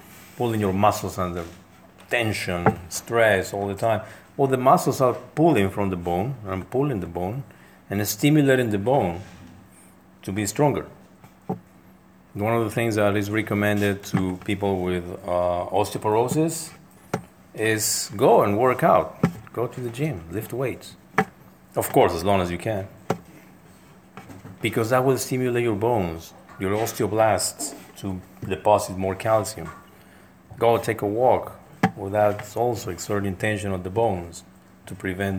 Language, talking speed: English, 145 wpm